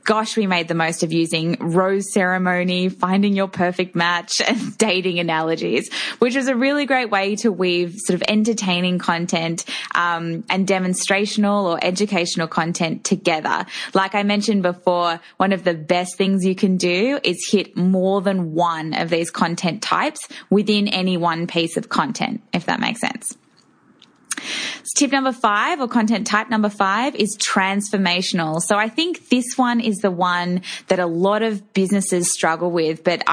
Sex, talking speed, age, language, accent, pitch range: female, 165 wpm, 10-29, English, Australian, 180-220 Hz